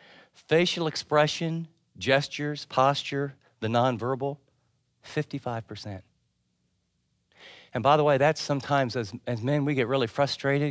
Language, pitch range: English, 115-175 Hz